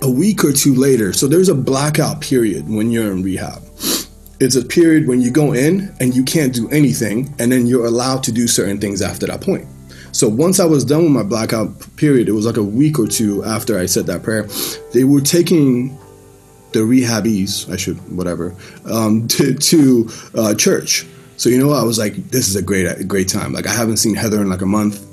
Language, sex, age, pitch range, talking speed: English, male, 20-39, 105-135 Hz, 220 wpm